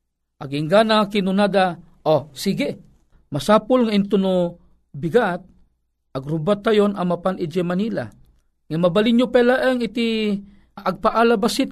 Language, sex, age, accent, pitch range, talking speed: Filipino, male, 40-59, native, 175-245 Hz, 115 wpm